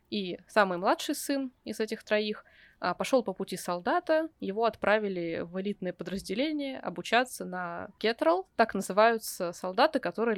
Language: Russian